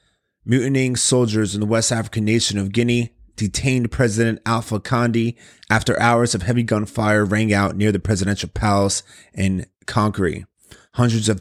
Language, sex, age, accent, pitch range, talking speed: English, male, 30-49, American, 100-110 Hz, 145 wpm